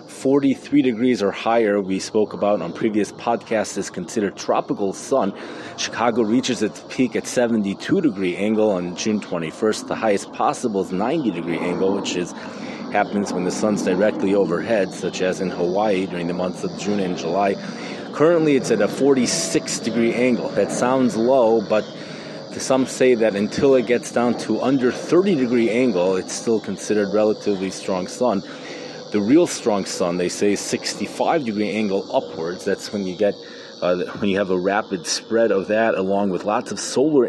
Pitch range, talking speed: 95-115 Hz, 175 wpm